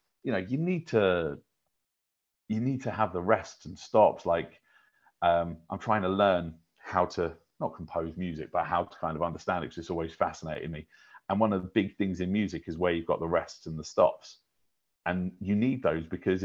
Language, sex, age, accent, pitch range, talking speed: English, male, 30-49, British, 85-105 Hz, 210 wpm